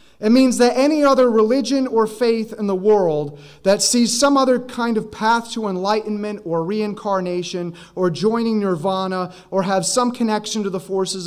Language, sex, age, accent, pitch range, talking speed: English, male, 30-49, American, 190-235 Hz, 170 wpm